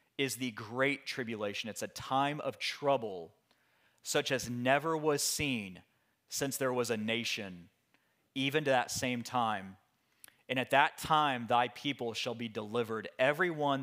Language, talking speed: English, 150 wpm